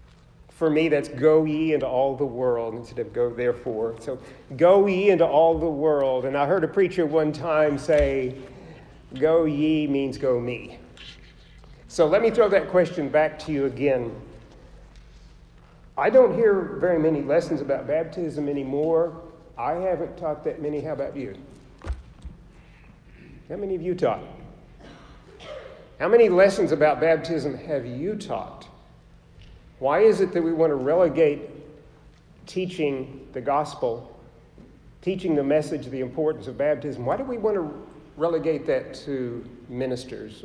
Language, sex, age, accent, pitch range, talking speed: English, male, 50-69, American, 135-165 Hz, 150 wpm